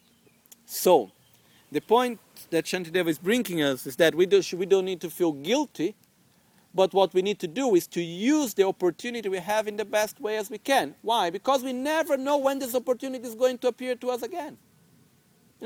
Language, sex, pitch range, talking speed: Italian, male, 185-235 Hz, 205 wpm